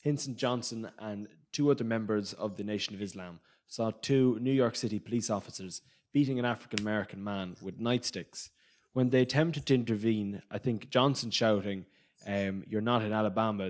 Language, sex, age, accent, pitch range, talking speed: English, male, 20-39, Irish, 105-125 Hz, 165 wpm